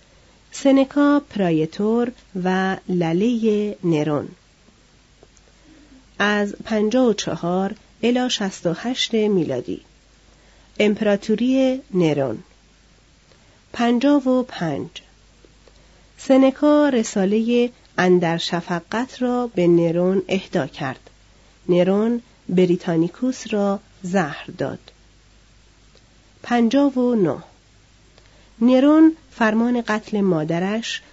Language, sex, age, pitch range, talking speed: Persian, female, 40-59, 175-245 Hz, 75 wpm